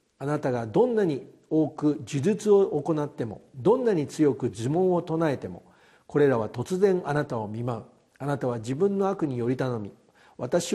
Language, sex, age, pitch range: Japanese, male, 50-69, 120-195 Hz